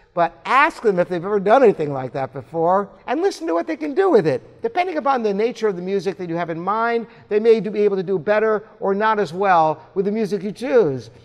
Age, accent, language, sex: 60-79, American, English, male